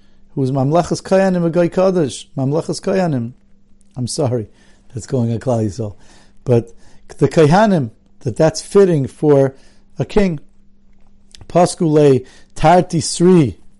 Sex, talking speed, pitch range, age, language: male, 115 wpm, 130-175 Hz, 50-69, English